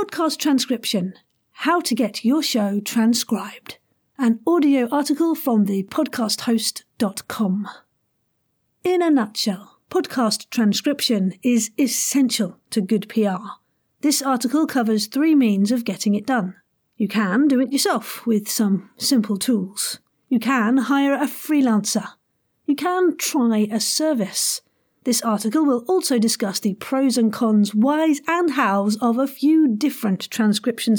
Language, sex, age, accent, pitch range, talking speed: English, female, 50-69, British, 210-280 Hz, 130 wpm